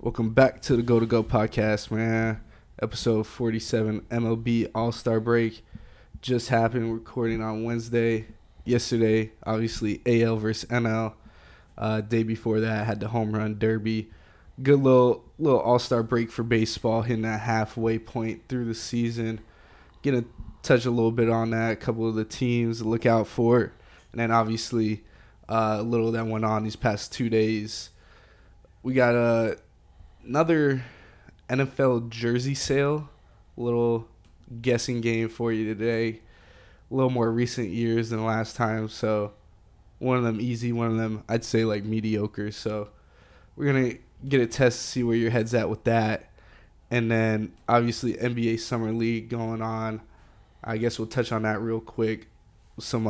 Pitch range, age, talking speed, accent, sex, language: 110-120 Hz, 20-39, 165 wpm, American, male, English